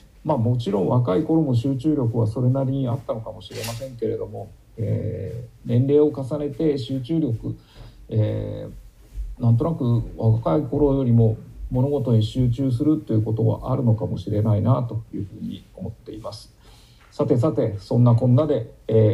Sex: male